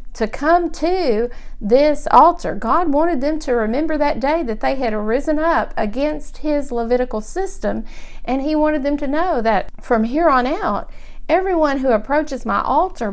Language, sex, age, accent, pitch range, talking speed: English, female, 50-69, American, 225-305 Hz, 170 wpm